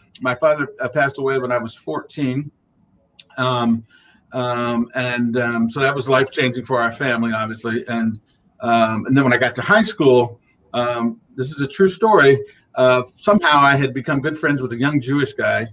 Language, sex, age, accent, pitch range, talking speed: English, male, 50-69, American, 120-140 Hz, 185 wpm